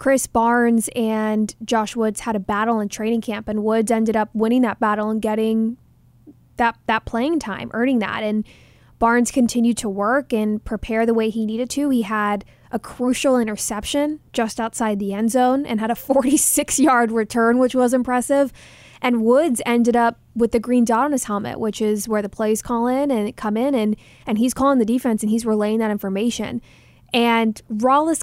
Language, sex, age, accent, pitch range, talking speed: English, female, 20-39, American, 220-255 Hz, 190 wpm